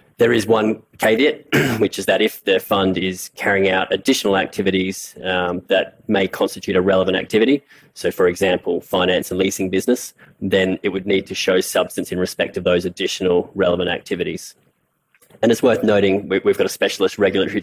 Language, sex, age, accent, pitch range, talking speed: English, male, 20-39, Australian, 95-100 Hz, 175 wpm